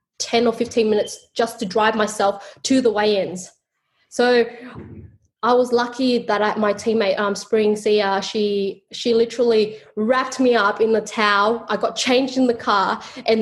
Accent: Australian